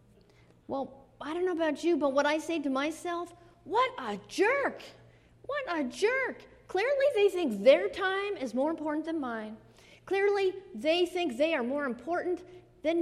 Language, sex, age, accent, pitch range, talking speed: English, female, 40-59, American, 265-375 Hz, 165 wpm